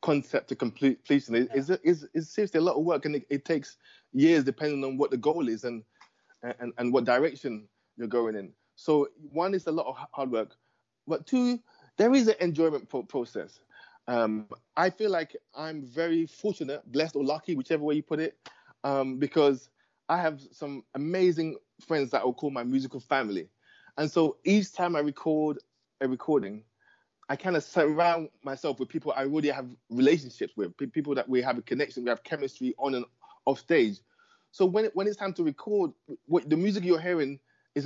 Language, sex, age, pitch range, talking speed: English, male, 20-39, 125-170 Hz, 195 wpm